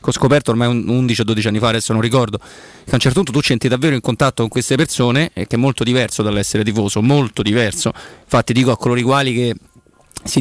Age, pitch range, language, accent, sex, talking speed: 30-49, 110-140 Hz, Italian, native, male, 225 wpm